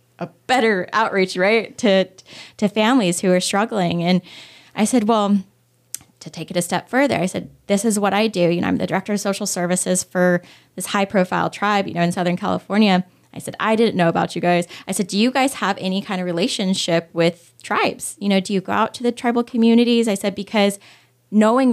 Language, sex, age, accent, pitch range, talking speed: English, female, 10-29, American, 175-210 Hz, 220 wpm